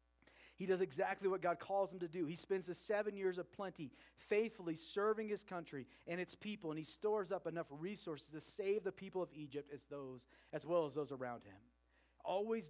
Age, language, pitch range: 40-59, English, 120-185 Hz